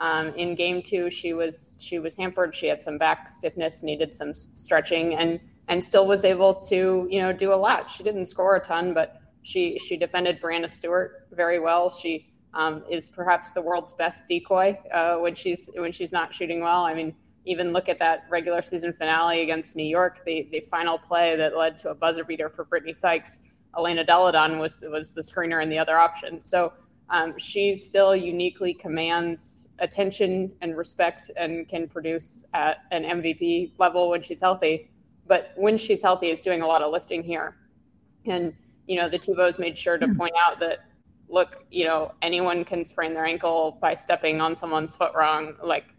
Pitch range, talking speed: 160-180 Hz, 195 wpm